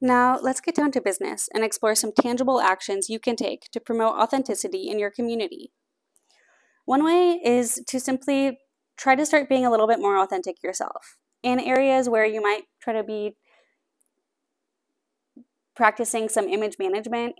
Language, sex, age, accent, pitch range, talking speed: English, female, 20-39, American, 200-265 Hz, 160 wpm